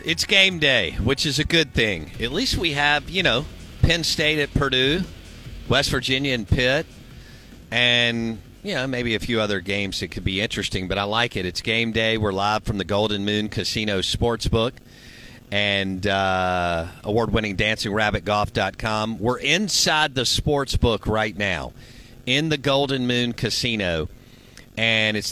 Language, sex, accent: English, male, American